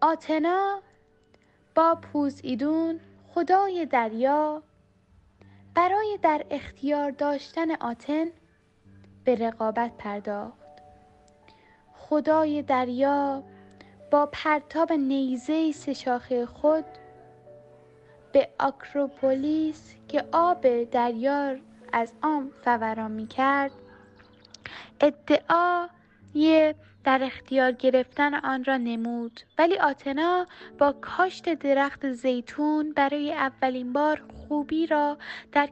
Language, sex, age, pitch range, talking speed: Persian, female, 10-29, 235-305 Hz, 80 wpm